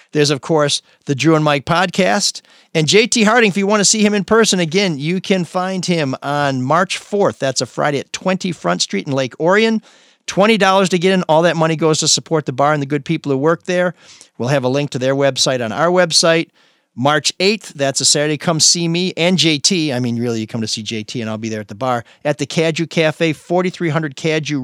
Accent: American